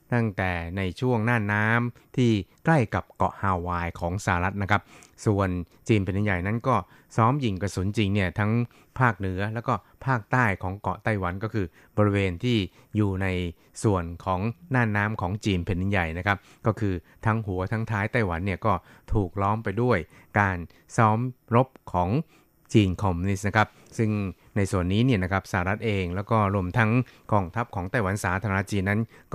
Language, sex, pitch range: Thai, male, 95-115 Hz